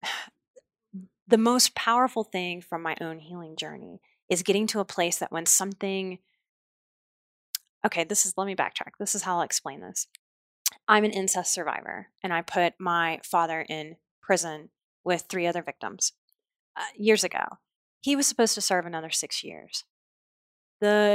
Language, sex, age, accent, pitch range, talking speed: English, female, 30-49, American, 170-210 Hz, 160 wpm